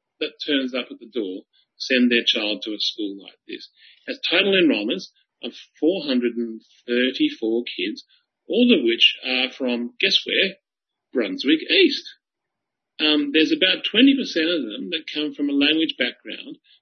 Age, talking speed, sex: 40-59, 150 wpm, male